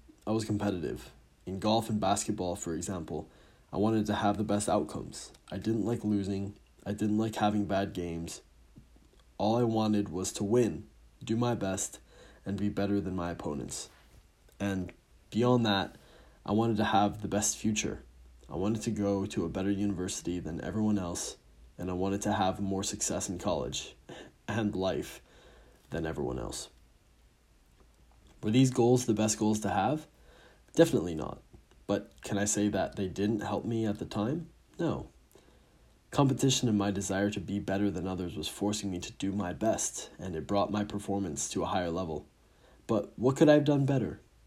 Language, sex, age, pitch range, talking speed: English, male, 20-39, 95-110 Hz, 175 wpm